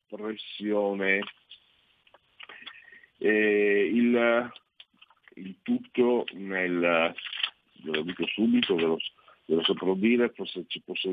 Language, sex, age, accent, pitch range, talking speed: Italian, male, 50-69, native, 105-135 Hz, 80 wpm